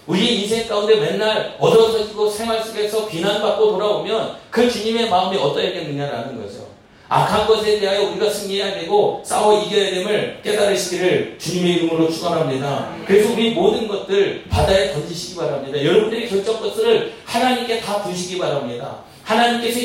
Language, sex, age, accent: Korean, male, 40-59, native